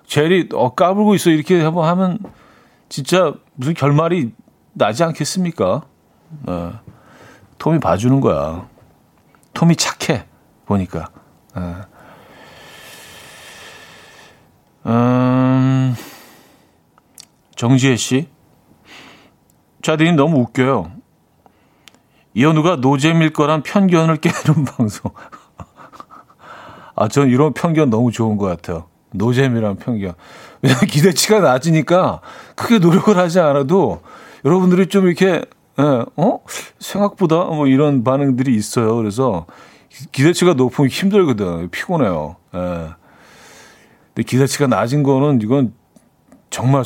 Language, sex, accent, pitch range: Korean, male, native, 120-175 Hz